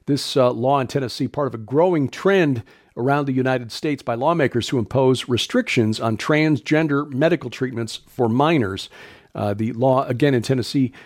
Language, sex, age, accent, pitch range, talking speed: English, male, 50-69, American, 120-150 Hz, 170 wpm